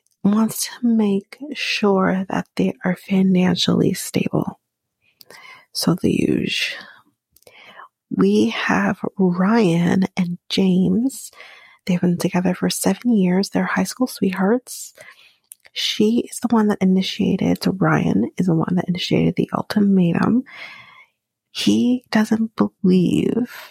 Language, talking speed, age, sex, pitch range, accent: English, 110 wpm, 30-49, female, 180-220 Hz, American